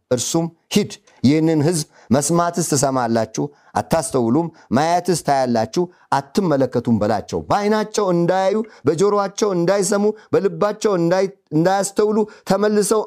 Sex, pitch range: male, 135-200 Hz